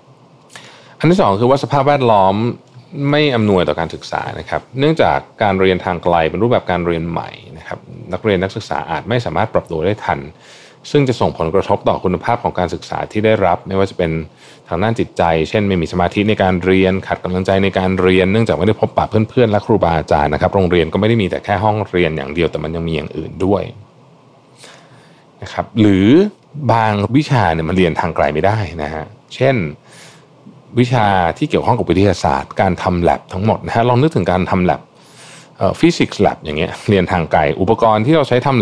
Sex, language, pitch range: male, Thai, 90-115 Hz